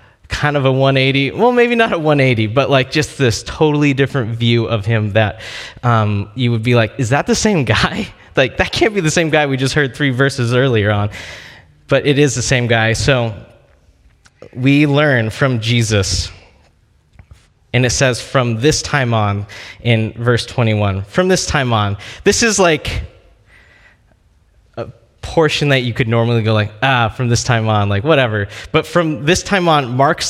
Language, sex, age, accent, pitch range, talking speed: English, male, 20-39, American, 105-140 Hz, 180 wpm